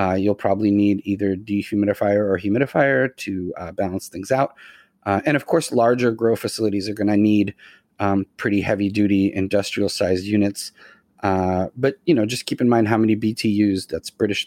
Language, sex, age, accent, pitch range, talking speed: English, male, 30-49, American, 100-115 Hz, 175 wpm